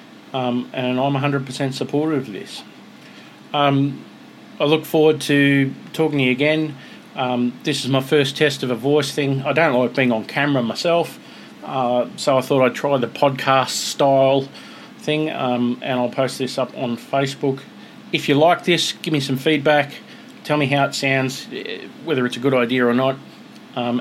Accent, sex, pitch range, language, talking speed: Australian, male, 120-145 Hz, English, 175 wpm